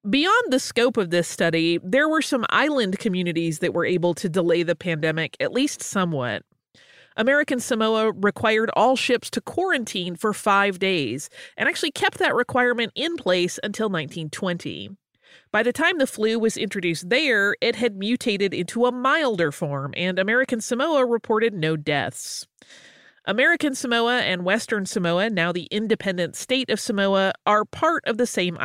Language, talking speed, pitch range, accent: English, 160 wpm, 175-245 Hz, American